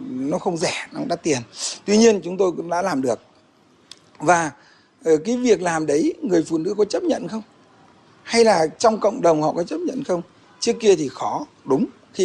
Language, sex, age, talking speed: Vietnamese, male, 60-79, 210 wpm